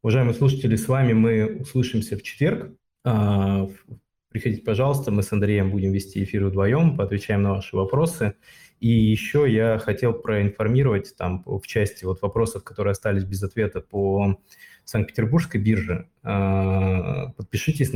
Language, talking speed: Russian, 130 wpm